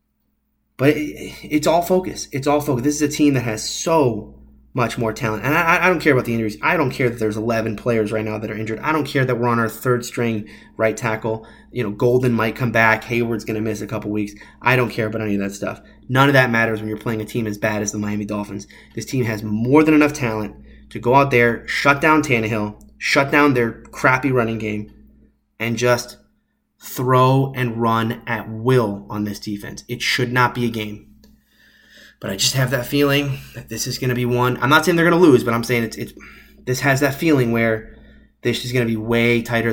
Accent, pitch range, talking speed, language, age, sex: American, 110-140 Hz, 235 wpm, English, 20-39, male